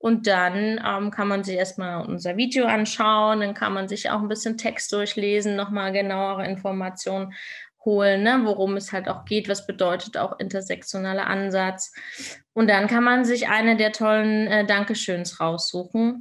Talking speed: 165 wpm